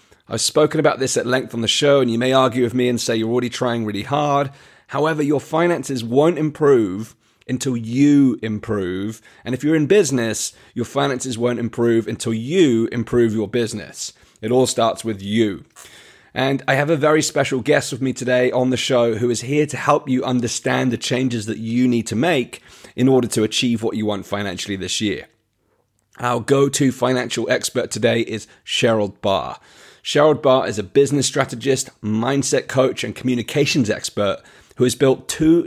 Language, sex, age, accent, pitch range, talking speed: English, male, 30-49, British, 110-135 Hz, 185 wpm